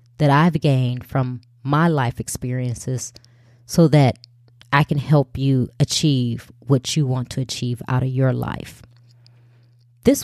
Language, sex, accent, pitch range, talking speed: English, female, American, 120-165 Hz, 140 wpm